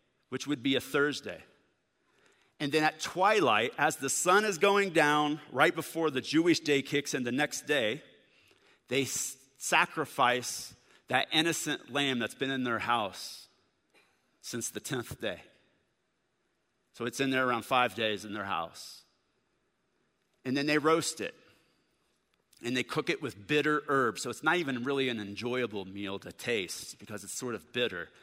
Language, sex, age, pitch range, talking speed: English, male, 40-59, 125-160 Hz, 160 wpm